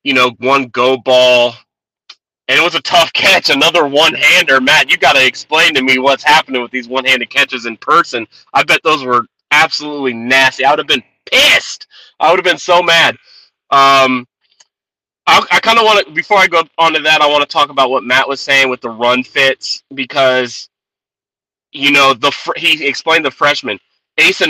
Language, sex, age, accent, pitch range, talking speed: English, male, 30-49, American, 130-145 Hz, 195 wpm